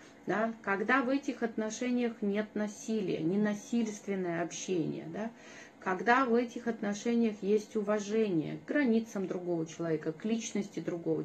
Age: 30-49